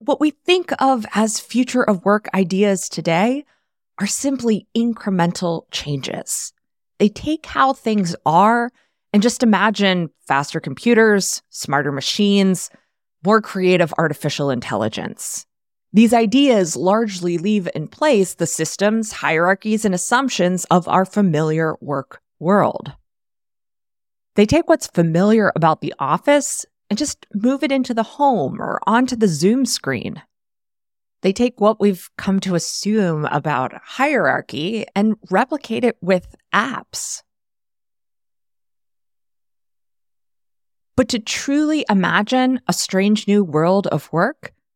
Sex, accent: female, American